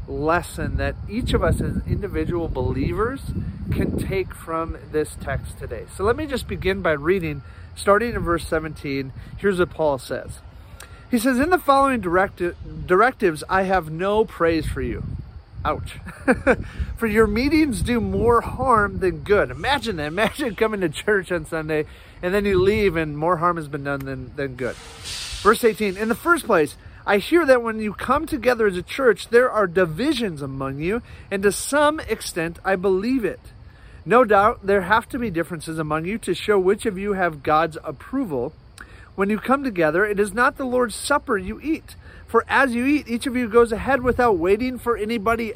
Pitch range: 150-235 Hz